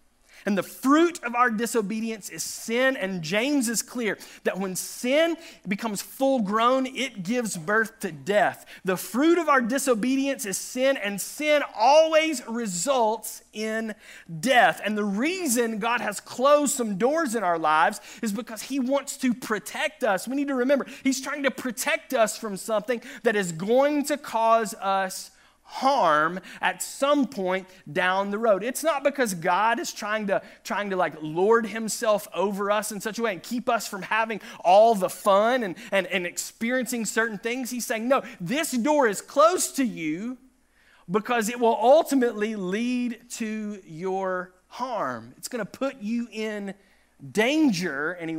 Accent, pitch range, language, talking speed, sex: American, 200-260 Hz, English, 170 wpm, male